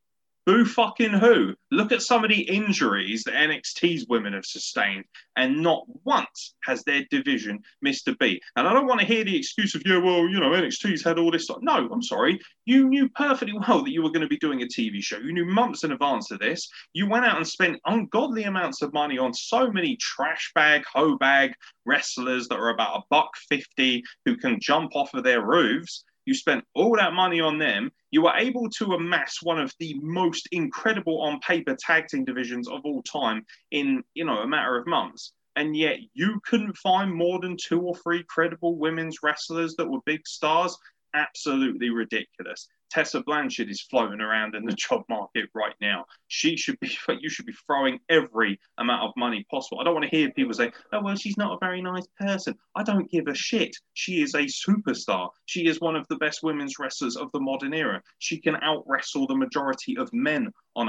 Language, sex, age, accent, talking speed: English, male, 20-39, British, 210 wpm